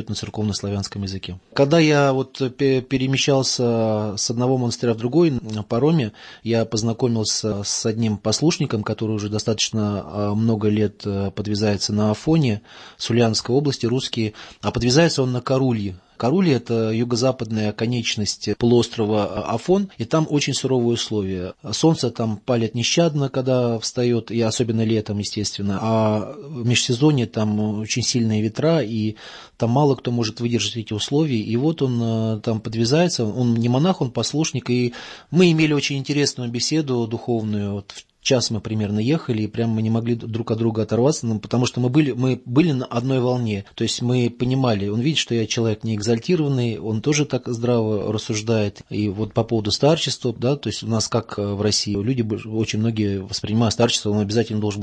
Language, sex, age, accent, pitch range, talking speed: Russian, male, 20-39, native, 110-130 Hz, 165 wpm